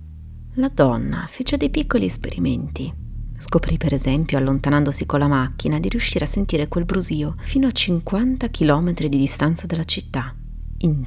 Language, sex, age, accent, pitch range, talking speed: Italian, female, 30-49, native, 105-175 Hz, 150 wpm